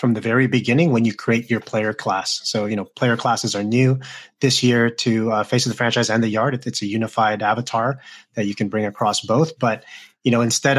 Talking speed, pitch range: 235 wpm, 105-125 Hz